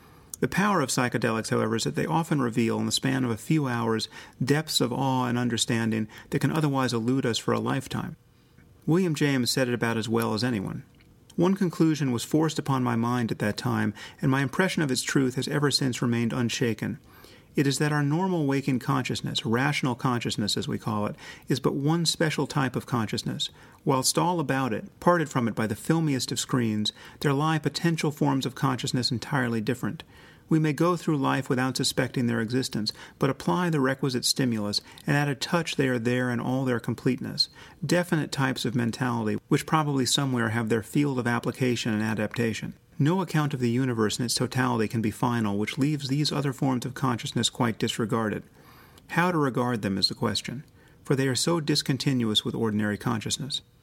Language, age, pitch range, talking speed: English, 40-59, 115-145 Hz, 195 wpm